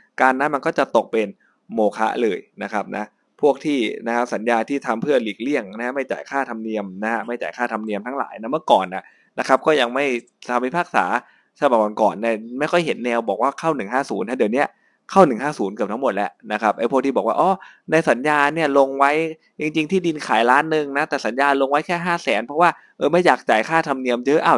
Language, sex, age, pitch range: Thai, male, 20-39, 110-140 Hz